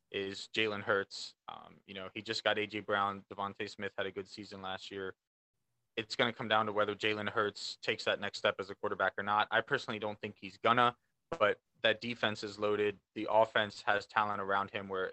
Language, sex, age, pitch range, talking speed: English, male, 20-39, 100-115 Hz, 220 wpm